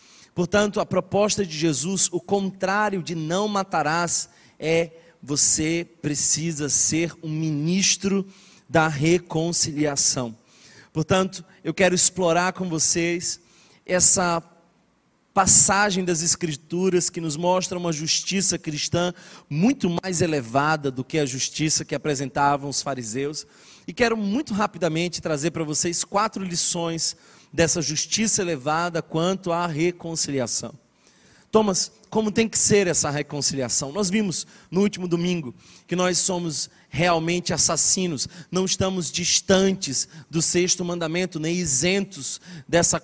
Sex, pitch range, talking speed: male, 160-185 Hz, 120 wpm